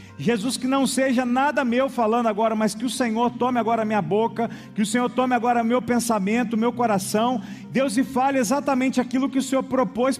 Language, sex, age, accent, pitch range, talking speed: Portuguese, male, 40-59, Brazilian, 210-255 Hz, 210 wpm